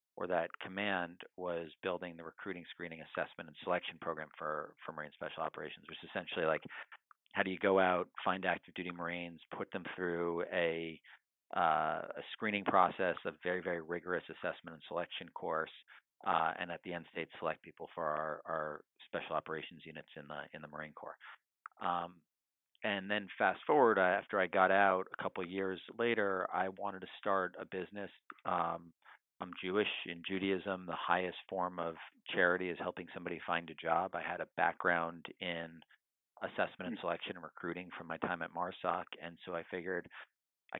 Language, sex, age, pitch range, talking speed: English, male, 40-59, 85-100 Hz, 180 wpm